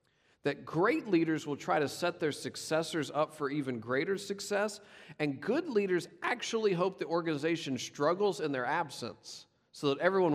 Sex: male